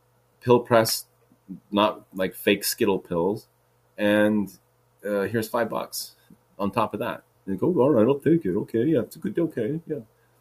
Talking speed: 180 wpm